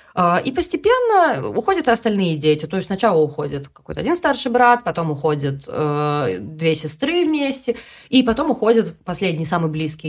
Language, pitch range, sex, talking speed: Russian, 155-235 Hz, female, 155 wpm